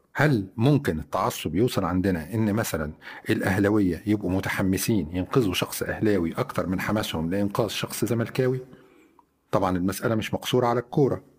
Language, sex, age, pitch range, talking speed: Arabic, male, 40-59, 95-120 Hz, 130 wpm